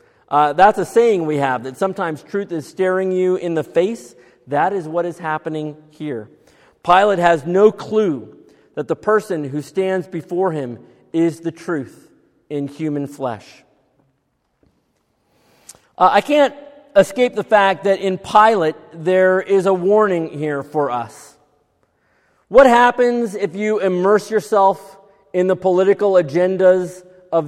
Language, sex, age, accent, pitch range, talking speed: English, male, 40-59, American, 160-205 Hz, 140 wpm